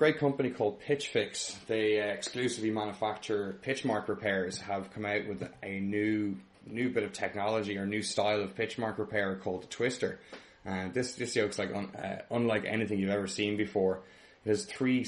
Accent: Irish